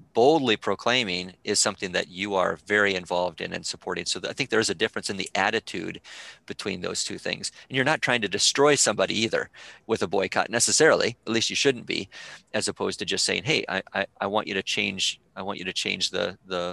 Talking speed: 220 wpm